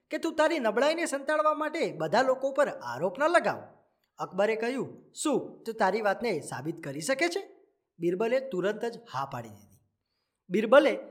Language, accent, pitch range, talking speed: Gujarati, native, 175-255 Hz, 155 wpm